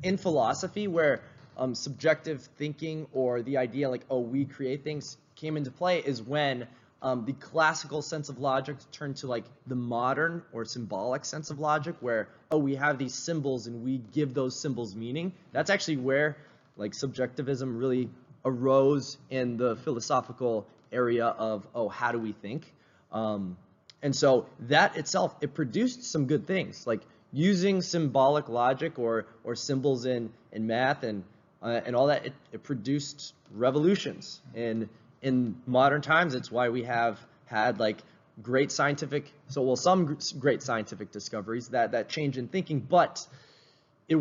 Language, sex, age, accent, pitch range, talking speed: English, male, 20-39, American, 120-150 Hz, 160 wpm